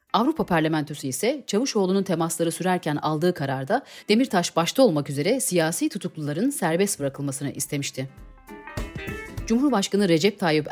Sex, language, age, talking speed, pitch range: female, Turkish, 40-59, 110 wpm, 145-215 Hz